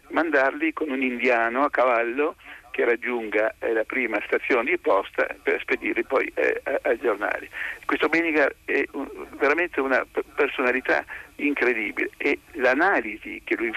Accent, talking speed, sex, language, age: native, 125 wpm, male, Italian, 50-69